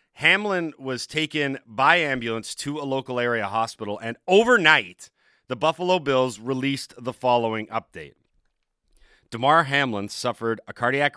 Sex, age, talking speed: male, 40-59, 130 wpm